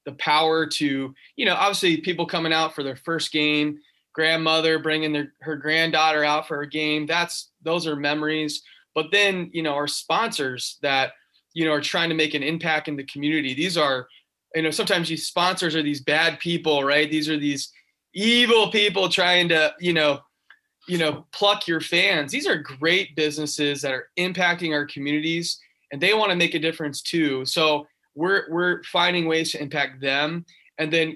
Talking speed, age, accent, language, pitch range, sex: 185 wpm, 20-39, American, English, 145-170 Hz, male